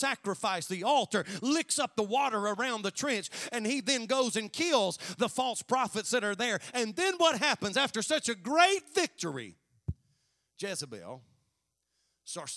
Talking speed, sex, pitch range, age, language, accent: 160 wpm, male, 165-260 Hz, 40-59, English, American